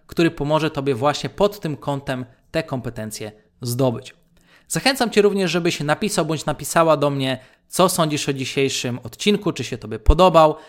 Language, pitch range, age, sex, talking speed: Polish, 135-170 Hz, 20-39, male, 155 wpm